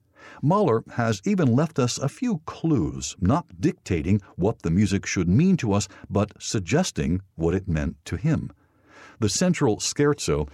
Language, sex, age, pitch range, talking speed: English, male, 60-79, 90-125 Hz, 155 wpm